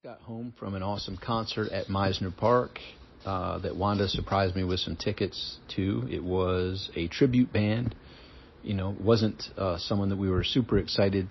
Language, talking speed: English, 180 wpm